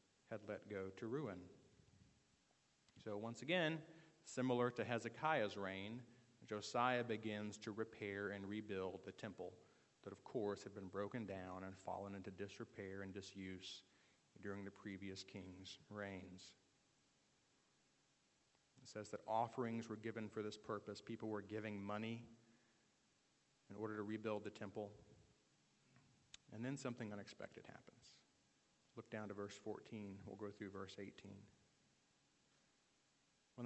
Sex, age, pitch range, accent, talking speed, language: male, 40-59, 100-120 Hz, American, 130 wpm, English